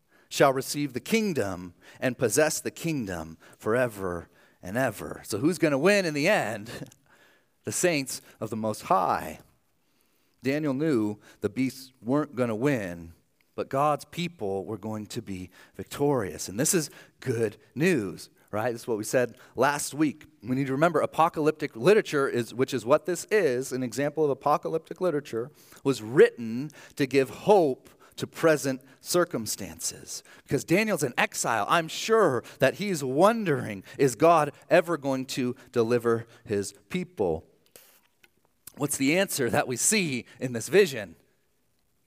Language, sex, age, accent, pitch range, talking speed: English, male, 40-59, American, 110-155 Hz, 150 wpm